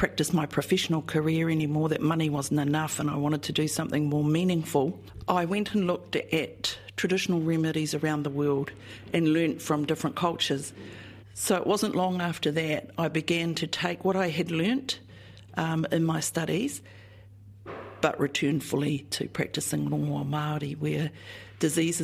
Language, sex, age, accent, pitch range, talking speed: English, female, 50-69, Australian, 145-185 Hz, 160 wpm